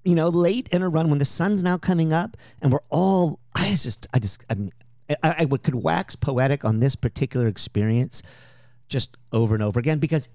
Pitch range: 115-140 Hz